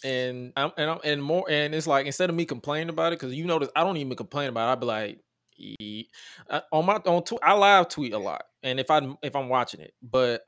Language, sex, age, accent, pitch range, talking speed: English, male, 20-39, American, 115-150 Hz, 265 wpm